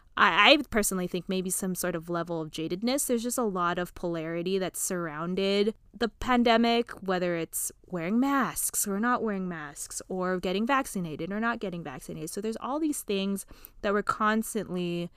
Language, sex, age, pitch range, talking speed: English, female, 20-39, 175-225 Hz, 170 wpm